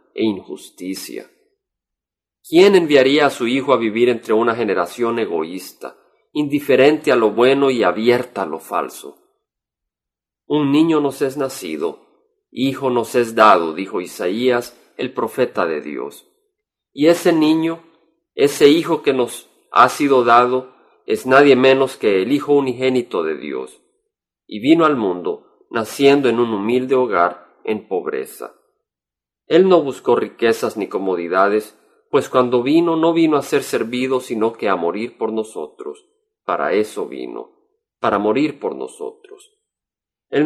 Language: Spanish